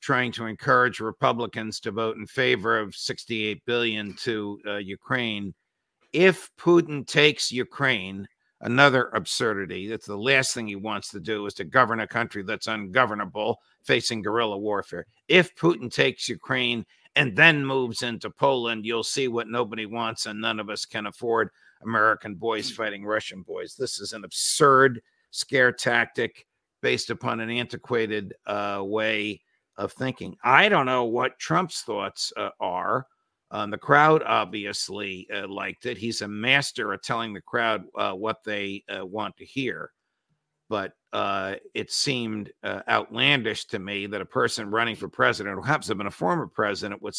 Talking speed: 165 wpm